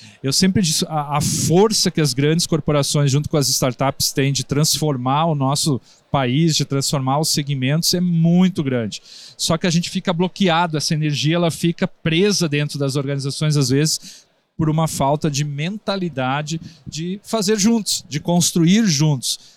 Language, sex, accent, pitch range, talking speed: Portuguese, male, Brazilian, 140-175 Hz, 165 wpm